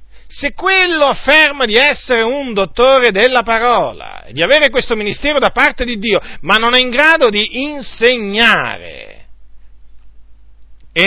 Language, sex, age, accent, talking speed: Italian, male, 40-59, native, 140 wpm